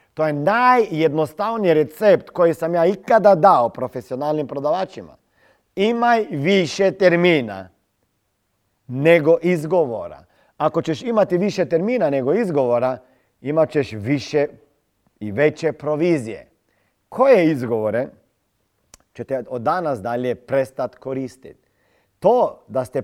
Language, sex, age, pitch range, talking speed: Croatian, male, 40-59, 135-175 Hz, 105 wpm